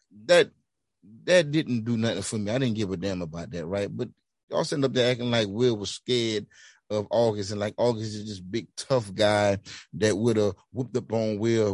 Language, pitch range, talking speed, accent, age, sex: English, 105-135 Hz, 215 wpm, American, 30-49, male